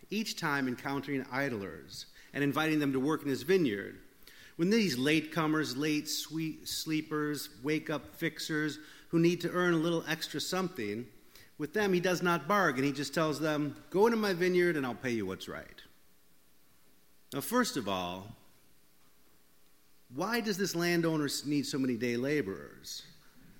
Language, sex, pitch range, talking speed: English, male, 140-200 Hz, 155 wpm